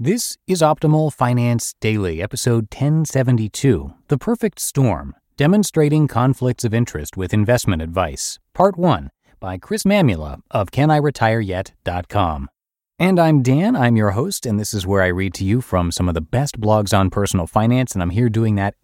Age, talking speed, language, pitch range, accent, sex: 30-49, 165 wpm, English, 90-130 Hz, American, male